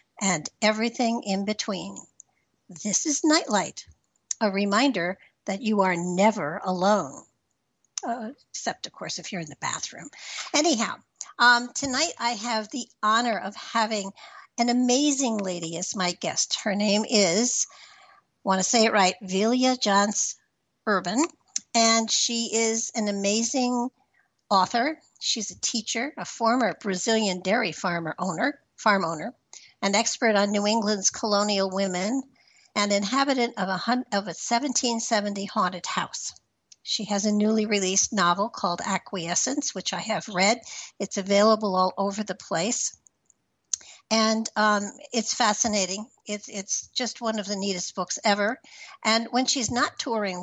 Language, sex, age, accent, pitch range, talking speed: English, female, 60-79, American, 195-235 Hz, 145 wpm